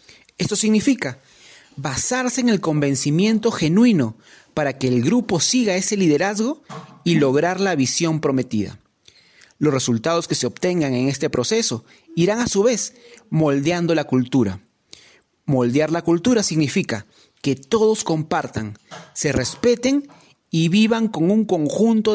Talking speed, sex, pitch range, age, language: 130 wpm, male, 135-200 Hz, 40-59, Spanish